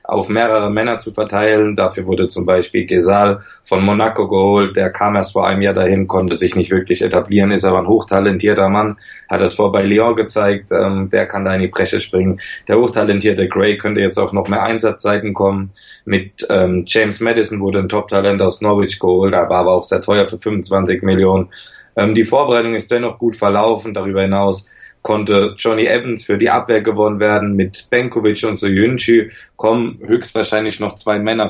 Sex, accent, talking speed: male, German, 185 wpm